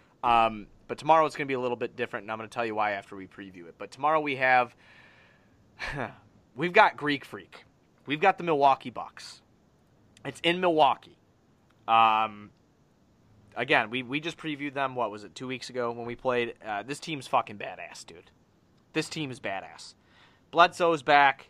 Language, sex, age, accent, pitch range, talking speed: English, male, 30-49, American, 115-150 Hz, 185 wpm